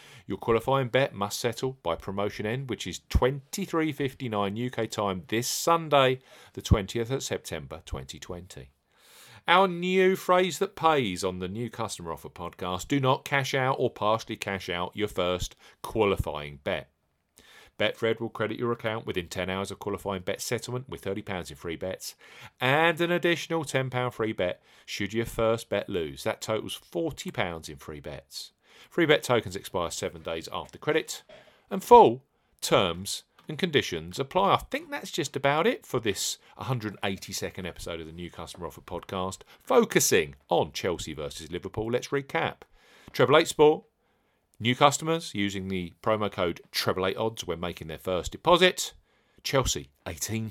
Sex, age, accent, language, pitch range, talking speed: male, 40-59, British, English, 90-140 Hz, 160 wpm